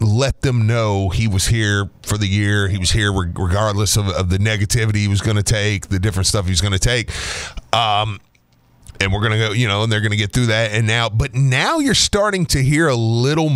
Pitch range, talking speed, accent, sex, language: 100-135 Hz, 240 wpm, American, male, English